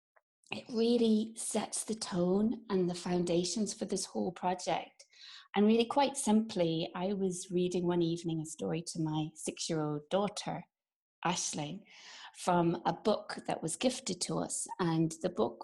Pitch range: 170-220 Hz